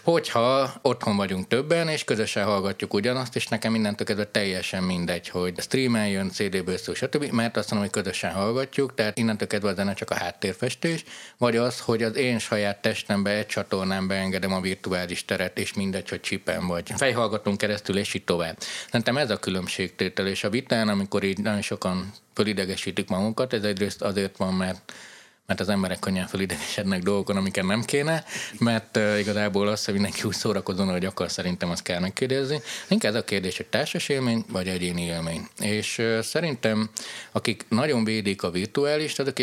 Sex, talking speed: male, 175 wpm